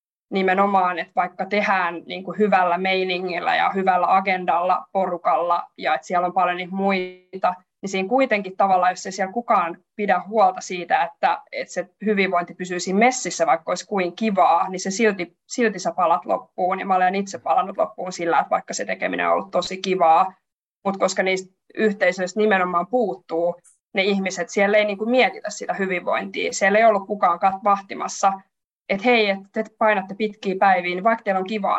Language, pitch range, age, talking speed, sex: Finnish, 180-200 Hz, 20-39, 170 wpm, female